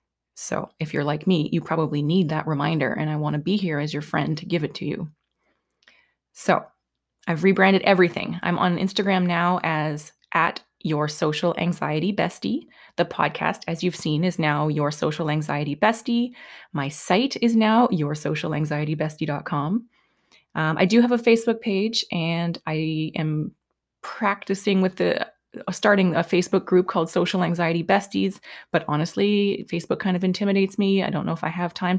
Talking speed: 170 wpm